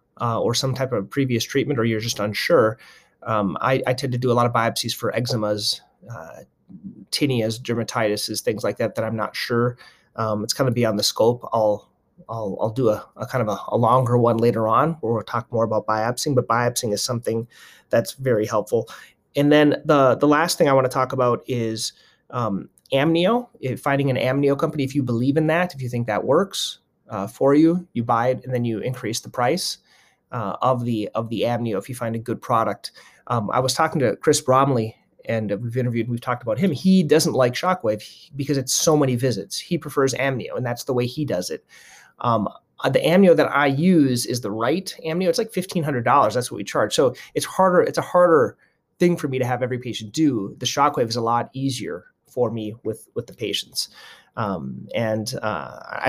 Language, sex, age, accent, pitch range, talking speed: English, male, 30-49, American, 115-145 Hz, 210 wpm